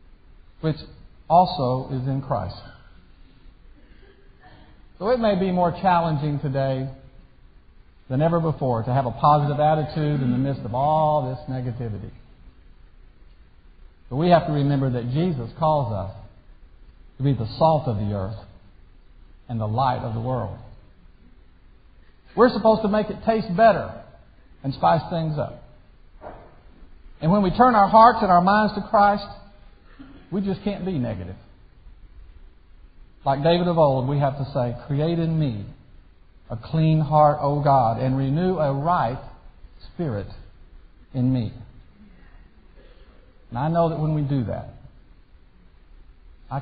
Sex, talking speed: male, 140 wpm